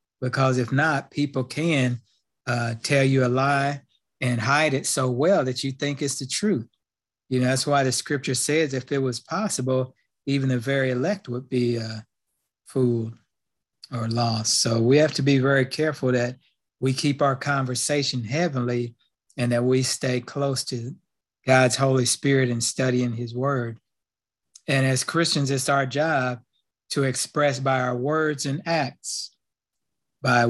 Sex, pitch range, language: male, 125-145 Hz, English